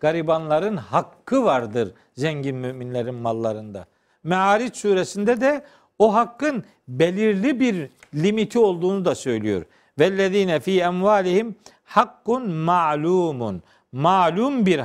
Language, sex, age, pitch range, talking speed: Turkish, male, 50-69, 160-215 Hz, 95 wpm